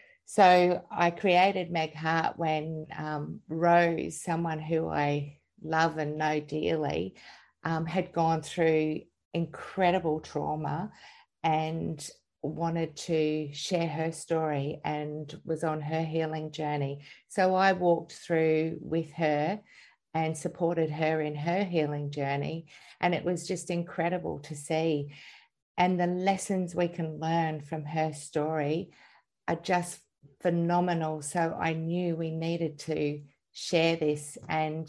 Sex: female